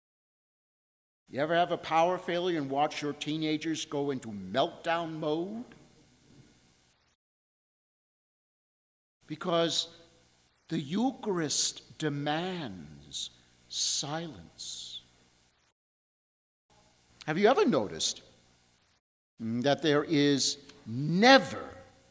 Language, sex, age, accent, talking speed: English, male, 50-69, American, 75 wpm